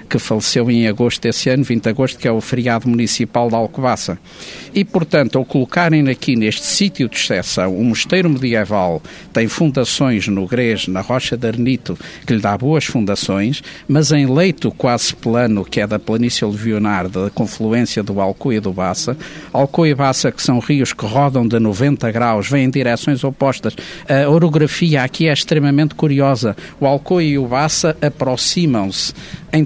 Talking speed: 175 wpm